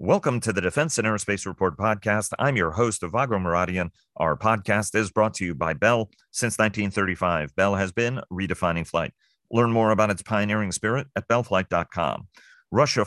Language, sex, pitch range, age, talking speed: English, male, 95-115 Hz, 40-59, 170 wpm